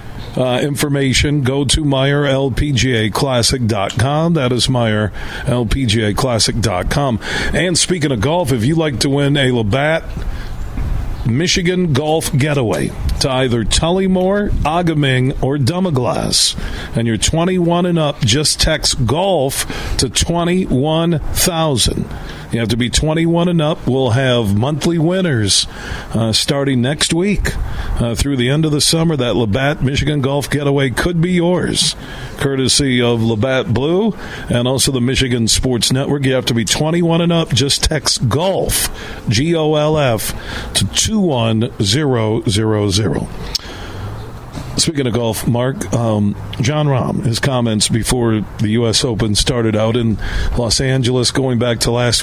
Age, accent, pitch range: 50-69, American, 115-145 Hz